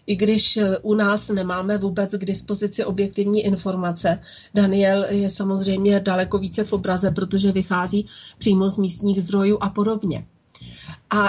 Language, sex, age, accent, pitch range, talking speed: Czech, female, 30-49, native, 195-225 Hz, 140 wpm